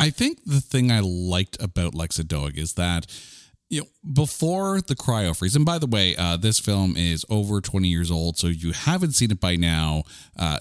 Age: 40-59